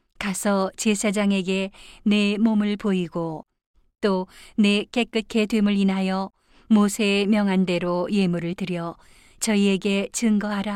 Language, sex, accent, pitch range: Korean, female, native, 185-210 Hz